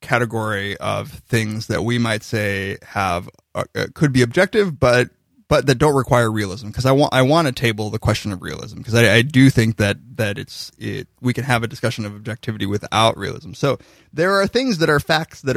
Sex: male